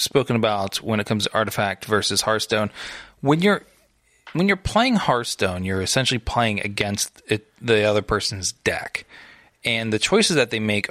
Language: English